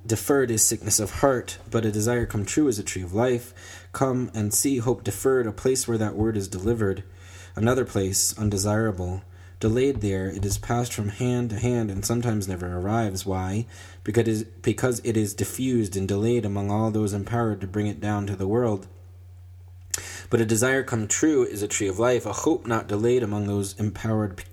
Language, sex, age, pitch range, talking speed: English, male, 20-39, 95-115 Hz, 190 wpm